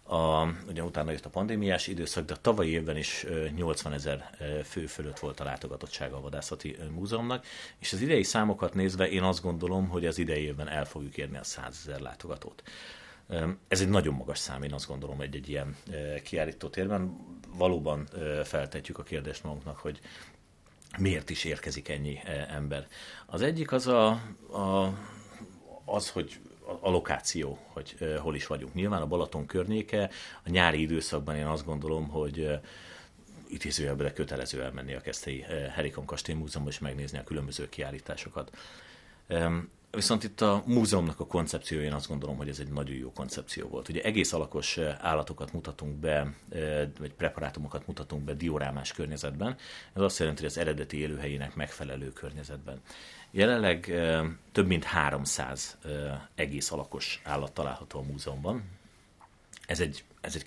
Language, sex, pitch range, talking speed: Hungarian, male, 75-90 Hz, 155 wpm